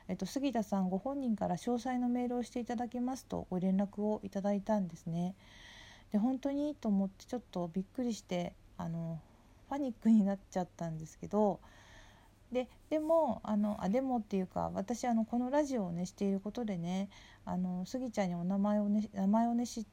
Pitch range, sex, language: 185-235 Hz, female, Japanese